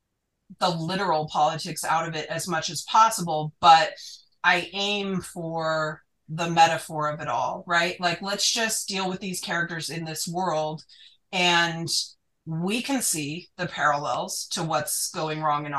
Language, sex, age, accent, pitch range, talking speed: English, female, 30-49, American, 160-195 Hz, 155 wpm